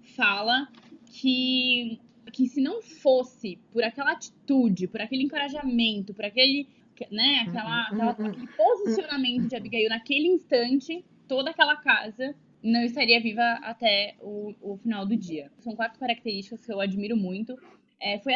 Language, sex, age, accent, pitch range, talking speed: Portuguese, female, 10-29, Brazilian, 230-315 Hz, 130 wpm